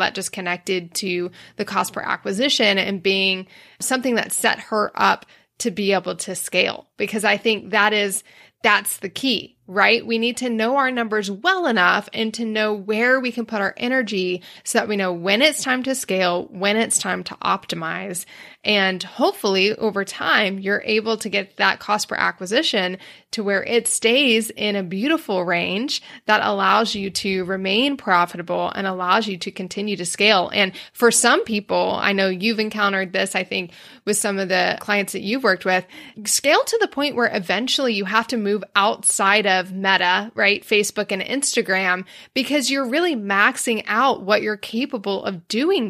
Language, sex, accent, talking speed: English, female, American, 185 wpm